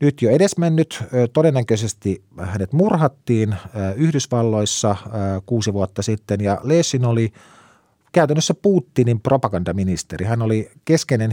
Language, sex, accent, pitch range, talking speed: Finnish, male, native, 105-135 Hz, 100 wpm